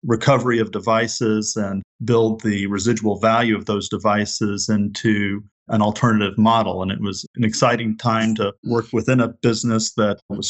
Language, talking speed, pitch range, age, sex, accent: English, 160 wpm, 105-115 Hz, 40-59, male, American